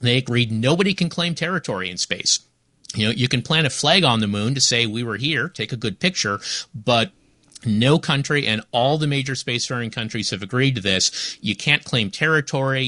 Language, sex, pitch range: English, male, 110-145 Hz